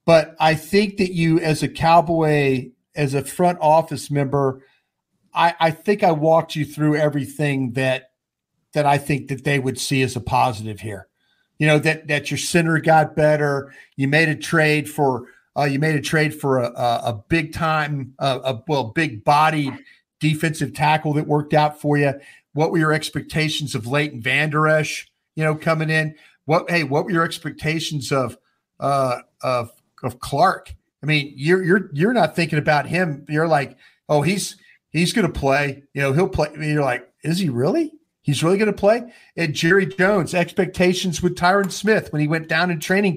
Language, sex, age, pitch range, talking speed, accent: English, male, 50-69, 140-170 Hz, 190 wpm, American